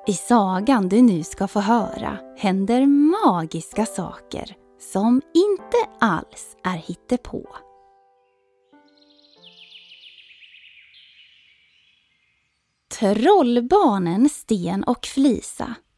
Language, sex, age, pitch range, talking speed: Swedish, female, 20-39, 185-265 Hz, 70 wpm